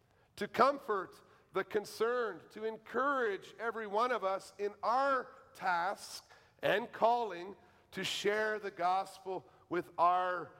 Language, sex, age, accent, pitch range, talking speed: English, male, 50-69, American, 155-205 Hz, 120 wpm